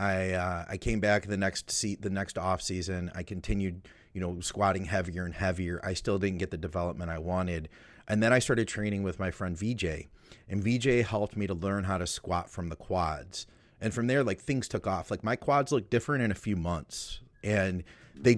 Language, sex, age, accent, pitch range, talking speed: English, male, 30-49, American, 90-110 Hz, 220 wpm